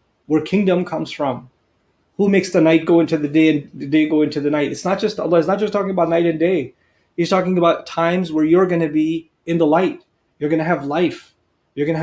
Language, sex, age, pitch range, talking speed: English, male, 30-49, 150-180 Hz, 255 wpm